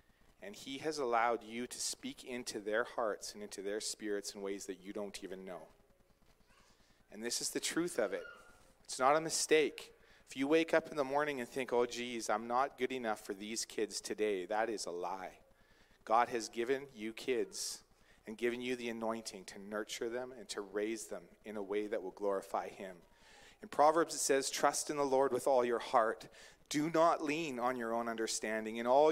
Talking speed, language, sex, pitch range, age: 205 wpm, English, male, 110-150 Hz, 40-59